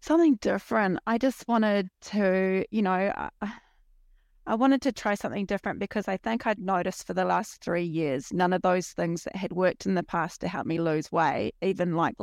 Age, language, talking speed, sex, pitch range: 30-49, English, 205 wpm, female, 175-215 Hz